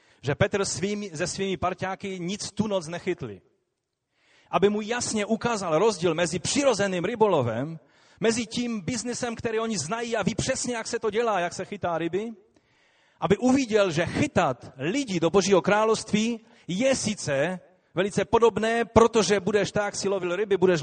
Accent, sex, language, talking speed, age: native, male, Czech, 160 wpm, 40-59